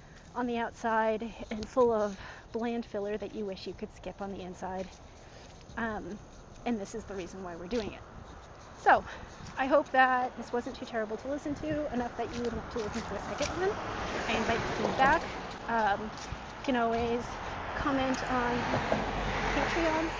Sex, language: female, English